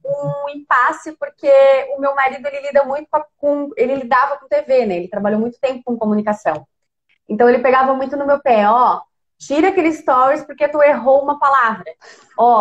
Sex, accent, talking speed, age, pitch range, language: female, Brazilian, 180 wpm, 20-39, 235-295 Hz, Portuguese